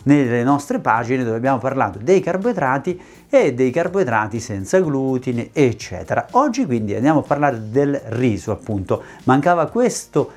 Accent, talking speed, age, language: native, 140 wpm, 40-59, Italian